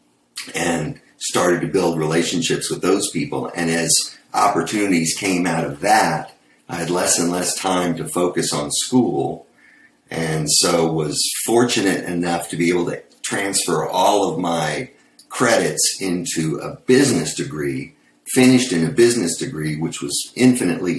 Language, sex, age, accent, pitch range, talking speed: English, male, 50-69, American, 80-90 Hz, 145 wpm